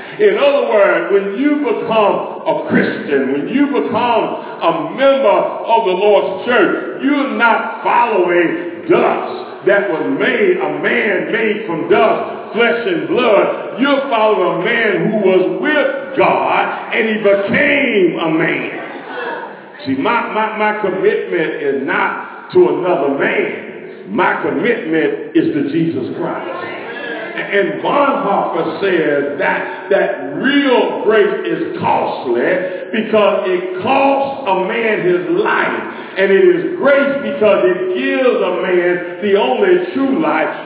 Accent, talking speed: American, 130 wpm